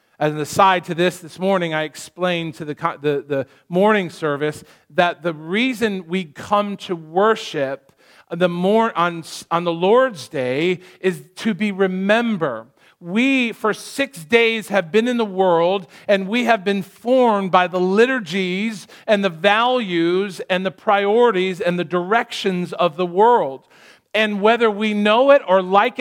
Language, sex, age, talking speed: English, male, 40-59, 160 wpm